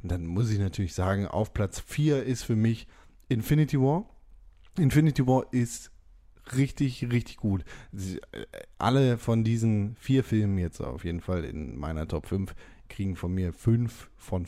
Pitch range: 100-140 Hz